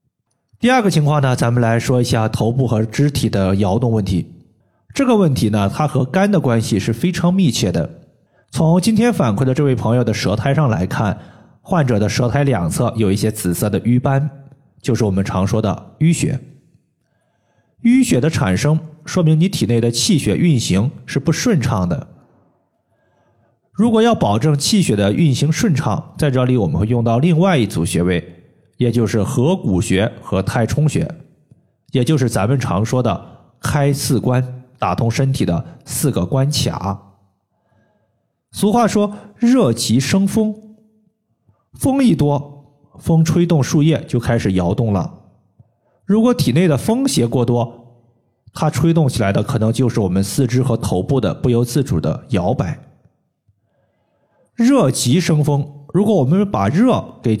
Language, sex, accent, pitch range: Chinese, male, native, 115-160 Hz